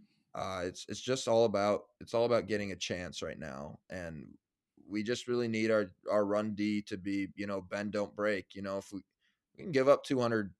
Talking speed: 220 wpm